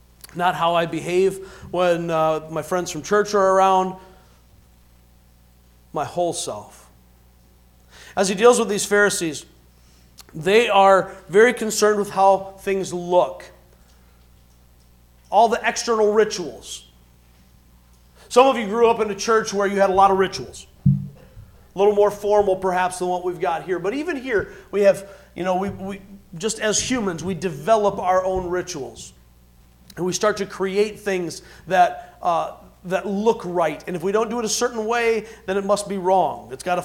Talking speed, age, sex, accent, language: 165 wpm, 40-59, male, American, English